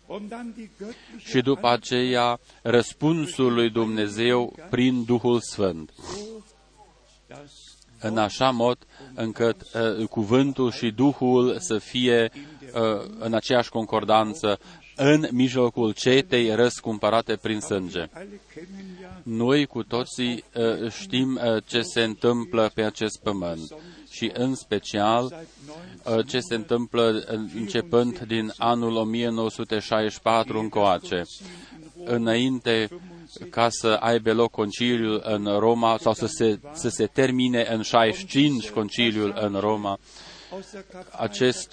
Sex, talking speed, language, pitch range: male, 100 wpm, Romanian, 110-125 Hz